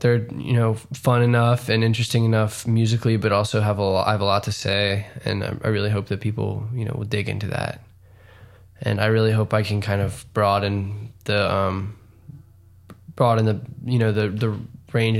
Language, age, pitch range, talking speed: English, 10-29, 105-120 Hz, 195 wpm